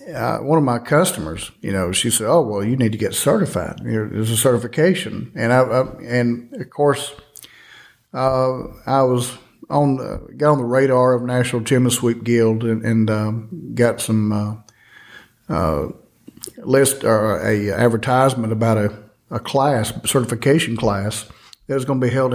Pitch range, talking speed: 110-130 Hz, 165 wpm